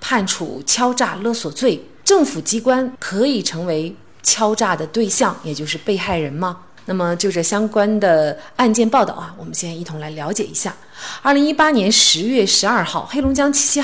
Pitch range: 170-245 Hz